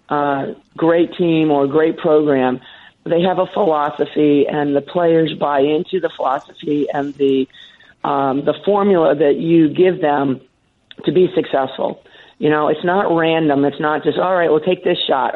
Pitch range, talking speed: 145-175 Hz, 170 wpm